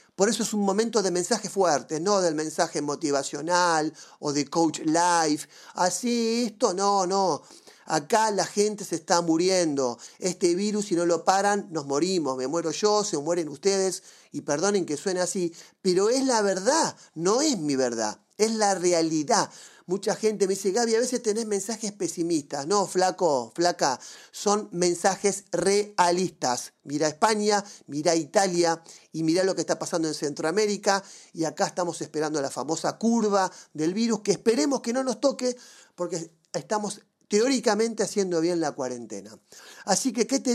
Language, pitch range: Spanish, 165-220 Hz